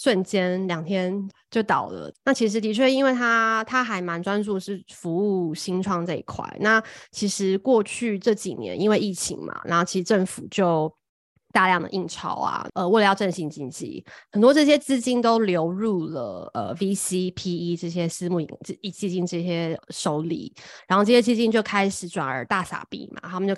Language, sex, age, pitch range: Chinese, female, 20-39, 175-220 Hz